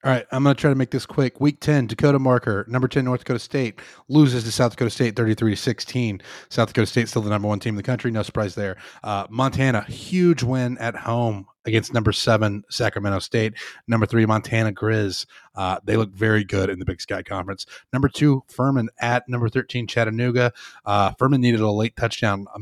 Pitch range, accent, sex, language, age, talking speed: 105-125 Hz, American, male, English, 30-49, 205 wpm